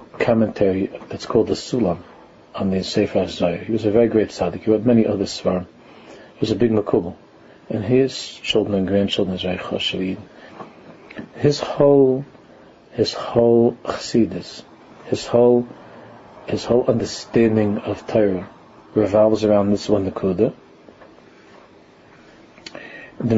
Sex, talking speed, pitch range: male, 125 wpm, 100-120 Hz